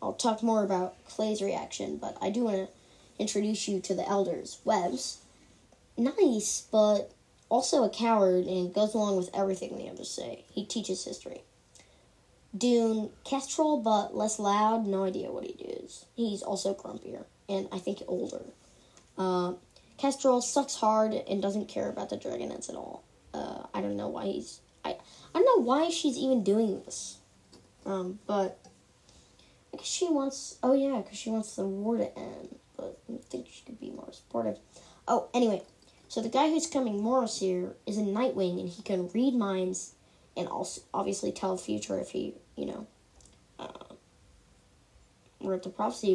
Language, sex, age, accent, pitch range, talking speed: English, female, 10-29, American, 195-255 Hz, 170 wpm